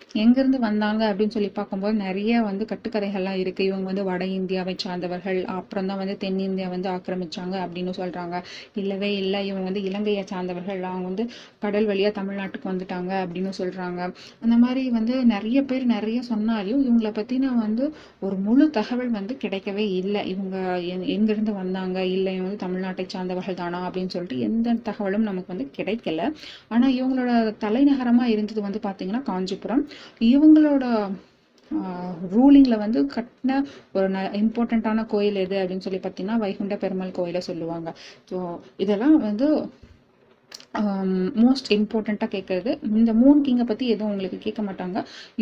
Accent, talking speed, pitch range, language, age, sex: native, 140 wpm, 190-230 Hz, Tamil, 20-39, female